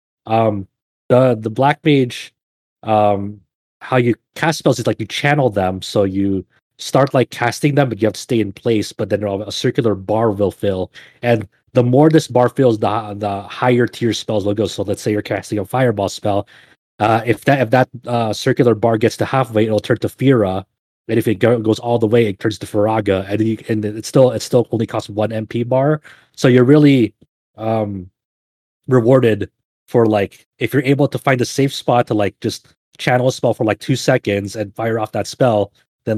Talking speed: 210 wpm